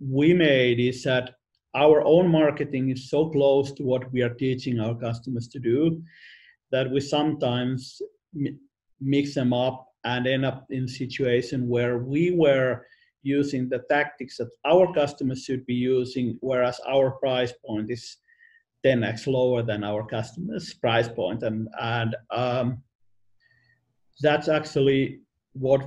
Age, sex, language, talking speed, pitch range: 50-69, male, English, 140 wpm, 120-150 Hz